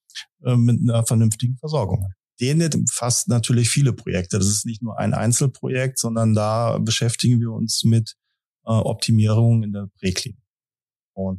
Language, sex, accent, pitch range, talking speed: German, male, German, 100-125 Hz, 135 wpm